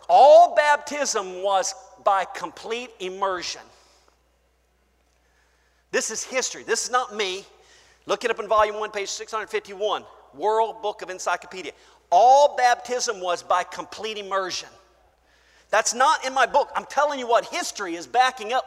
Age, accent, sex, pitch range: 40-59, American, male, 190-290 Hz